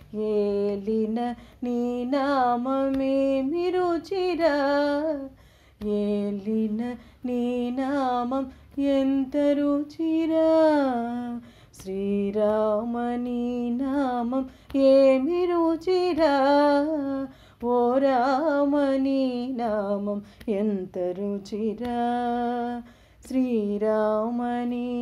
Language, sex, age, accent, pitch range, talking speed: Telugu, female, 30-49, native, 220-275 Hz, 35 wpm